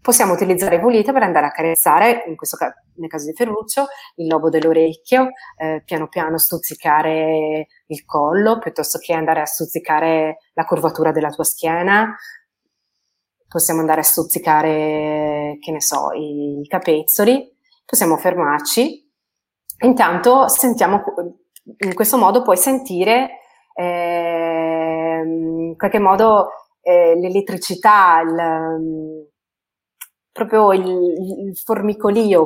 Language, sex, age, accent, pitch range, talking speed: Italian, female, 30-49, native, 160-210 Hz, 115 wpm